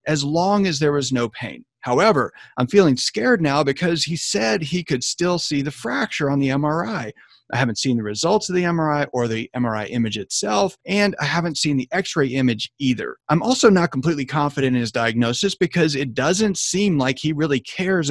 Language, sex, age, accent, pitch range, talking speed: English, male, 40-59, American, 120-165 Hz, 200 wpm